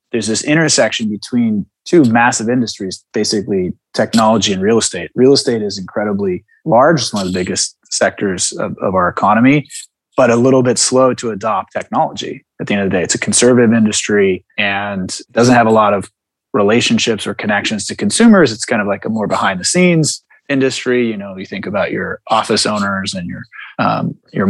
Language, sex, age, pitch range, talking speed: English, male, 20-39, 105-135 Hz, 185 wpm